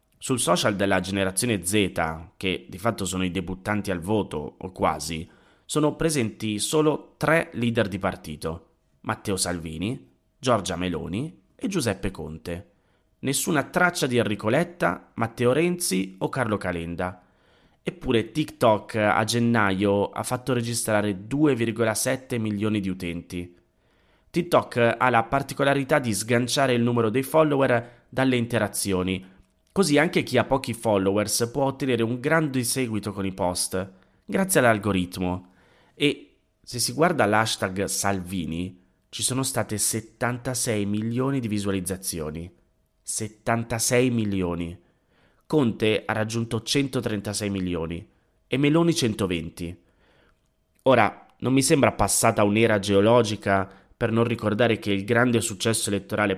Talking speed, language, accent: 125 wpm, Italian, native